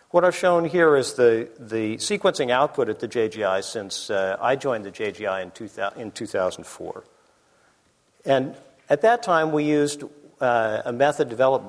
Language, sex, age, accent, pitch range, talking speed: English, male, 50-69, American, 115-175 Hz, 165 wpm